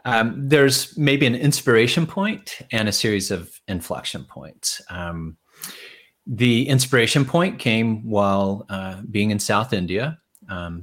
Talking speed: 135 wpm